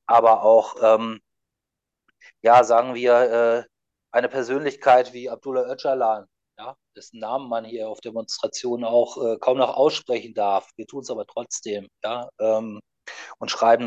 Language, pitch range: German, 115-130 Hz